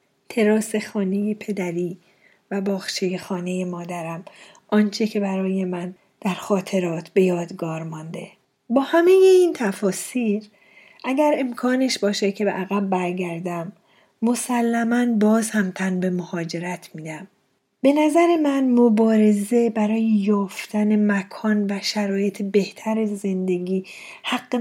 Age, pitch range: 40-59, 190-240 Hz